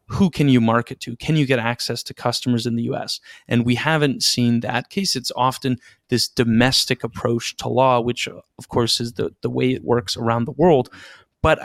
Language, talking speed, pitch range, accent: English, 205 wpm, 120-130 Hz, American